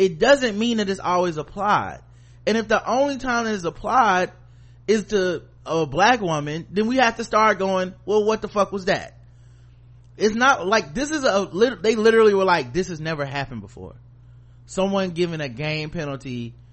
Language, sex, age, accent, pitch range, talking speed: English, male, 30-49, American, 120-185 Hz, 185 wpm